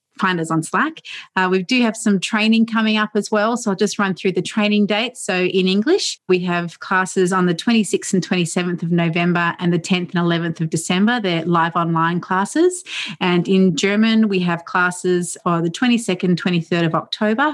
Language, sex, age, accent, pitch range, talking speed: English, female, 30-49, Australian, 175-215 Hz, 200 wpm